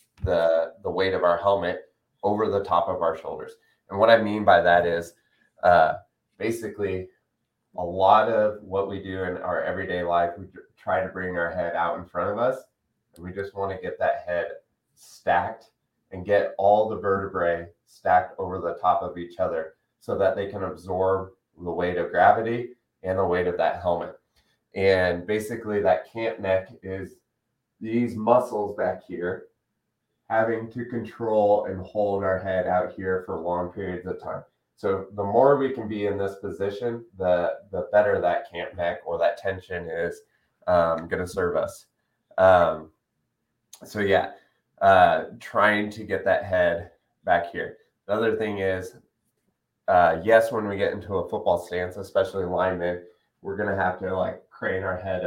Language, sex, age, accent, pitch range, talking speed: English, male, 20-39, American, 90-110 Hz, 170 wpm